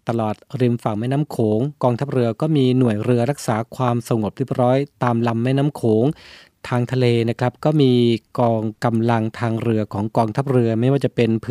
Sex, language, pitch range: male, Thai, 115-140 Hz